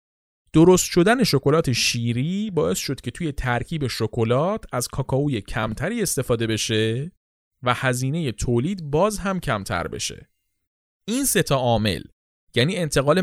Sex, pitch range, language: male, 115-170 Hz, Persian